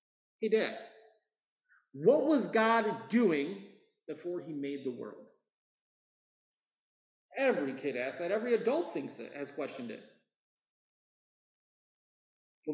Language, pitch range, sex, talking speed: English, 140-205 Hz, male, 110 wpm